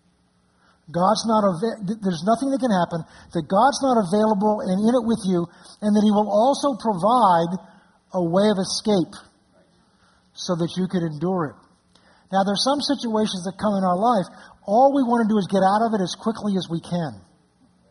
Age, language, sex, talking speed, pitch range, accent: 50-69, English, male, 190 wpm, 165-215 Hz, American